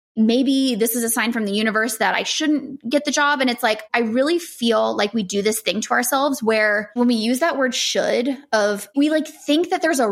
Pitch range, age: 210-265 Hz, 20-39